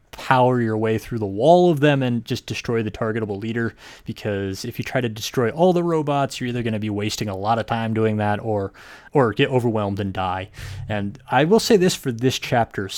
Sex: male